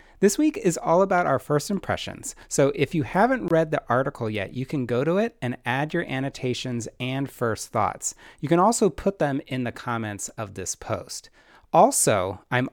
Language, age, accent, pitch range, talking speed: English, 30-49, American, 120-170 Hz, 195 wpm